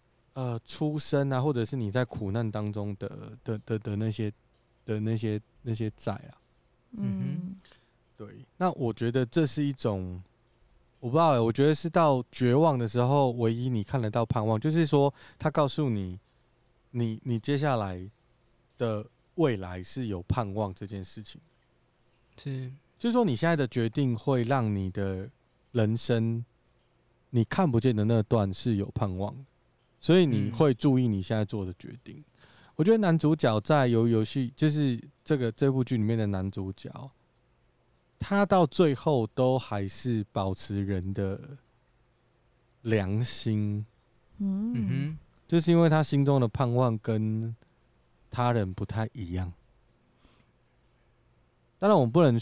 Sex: male